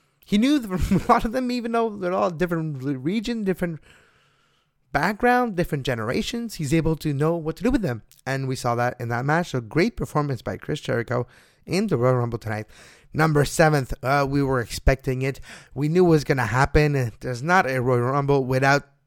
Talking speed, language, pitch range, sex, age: 200 wpm, English, 125-165 Hz, male, 20-39